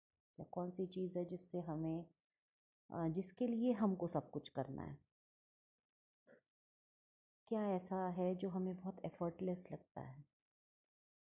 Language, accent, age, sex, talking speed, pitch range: Hindi, native, 30-49, female, 120 wpm, 155-200 Hz